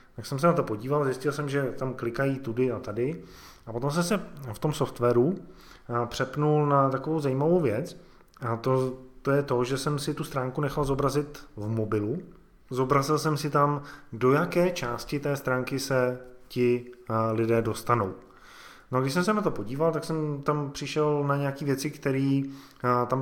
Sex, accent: male, native